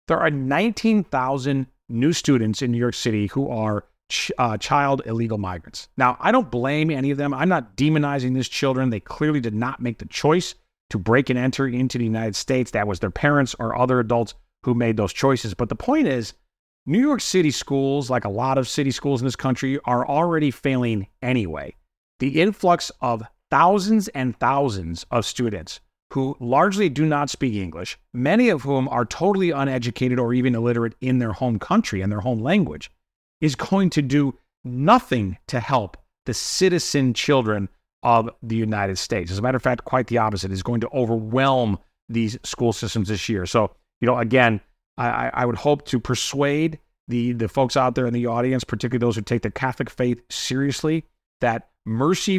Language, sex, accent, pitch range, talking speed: English, male, American, 115-140 Hz, 190 wpm